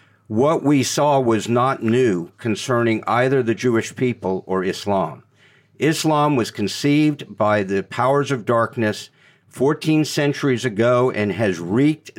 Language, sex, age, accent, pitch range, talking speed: English, male, 50-69, American, 115-150 Hz, 135 wpm